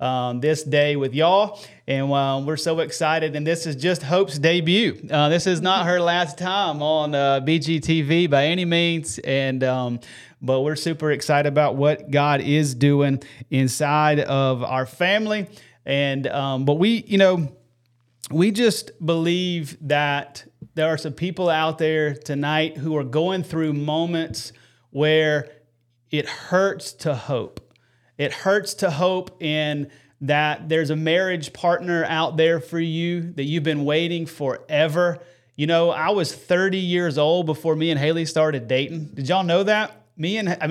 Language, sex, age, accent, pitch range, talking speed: English, male, 30-49, American, 145-180 Hz, 160 wpm